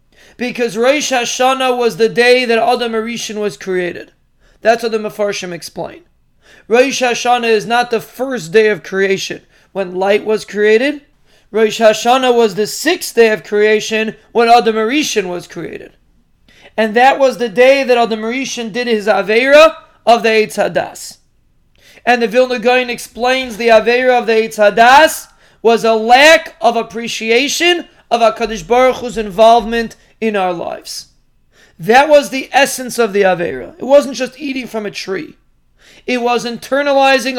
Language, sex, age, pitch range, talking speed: English, male, 30-49, 215-250 Hz, 155 wpm